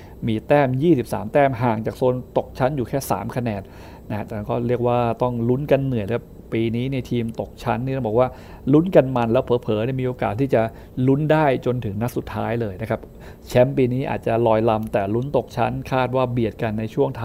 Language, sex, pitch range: Thai, male, 115-140 Hz